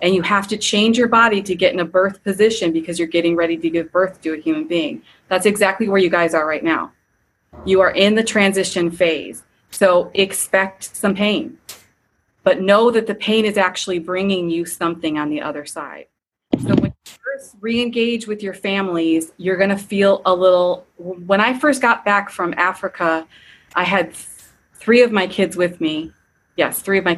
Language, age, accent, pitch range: English, 30-49, American, 170-205 Hz